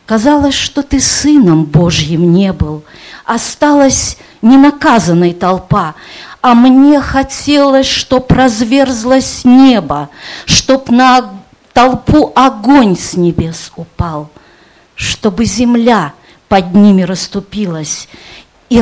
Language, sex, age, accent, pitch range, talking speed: Russian, female, 40-59, native, 165-250 Hz, 90 wpm